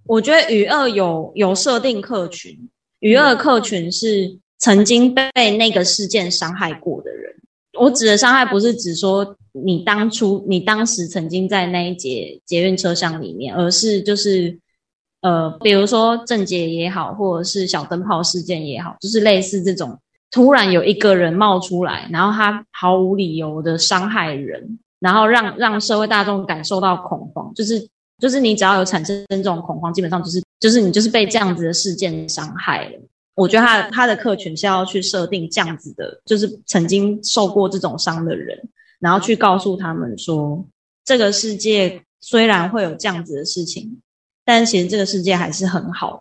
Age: 20-39